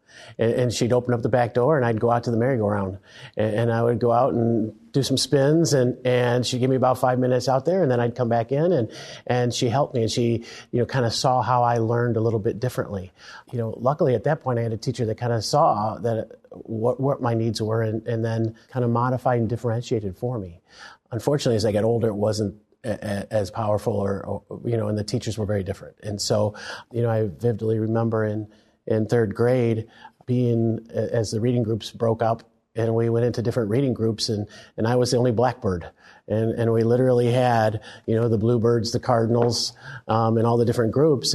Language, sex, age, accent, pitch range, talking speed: English, male, 40-59, American, 110-125 Hz, 230 wpm